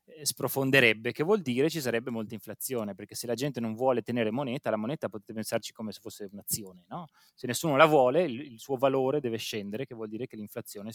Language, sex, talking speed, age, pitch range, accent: Italian, male, 215 wpm, 30-49, 110-135 Hz, native